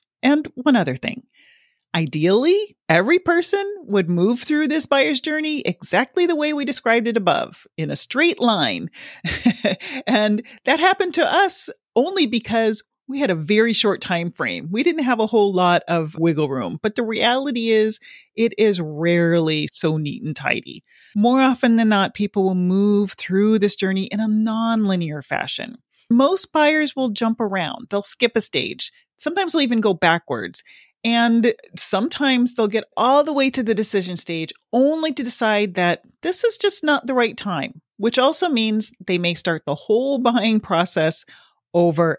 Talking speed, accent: 170 wpm, American